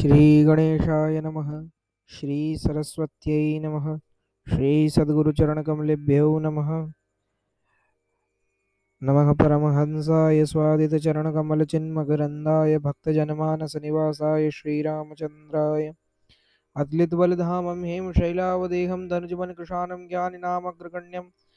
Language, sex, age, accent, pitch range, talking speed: Hindi, male, 20-39, native, 150-175 Hz, 60 wpm